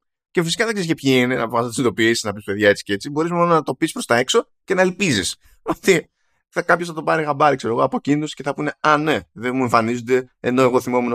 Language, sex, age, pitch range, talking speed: Greek, male, 20-39, 110-160 Hz, 265 wpm